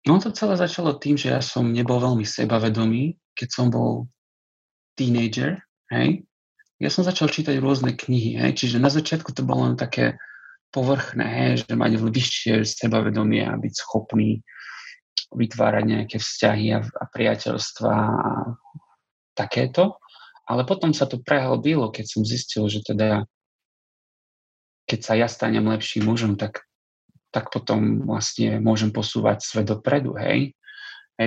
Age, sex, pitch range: 30-49, male, 105-125 Hz